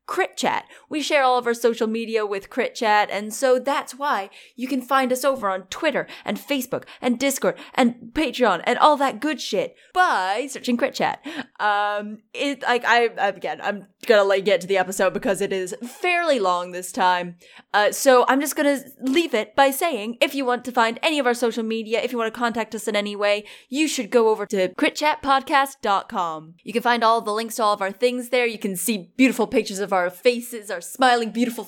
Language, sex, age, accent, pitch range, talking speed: English, female, 20-39, American, 205-255 Hz, 210 wpm